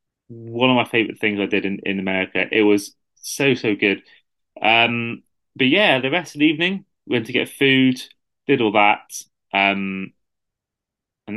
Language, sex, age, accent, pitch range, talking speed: English, male, 30-49, British, 105-135 Hz, 170 wpm